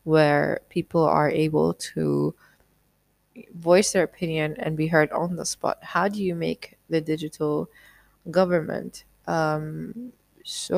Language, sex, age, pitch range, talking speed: English, female, 20-39, 155-180 Hz, 130 wpm